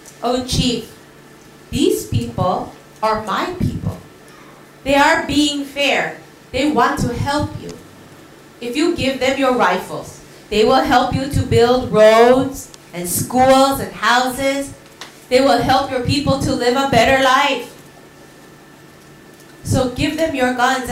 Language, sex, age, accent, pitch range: Korean, female, 30-49, American, 185-260 Hz